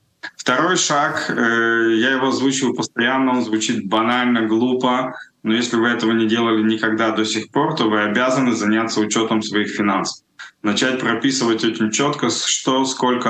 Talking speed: 150 wpm